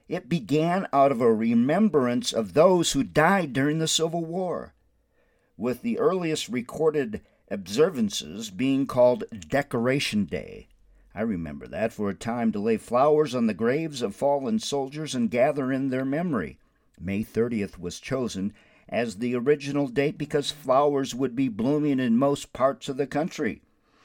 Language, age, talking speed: English, 50-69, 155 wpm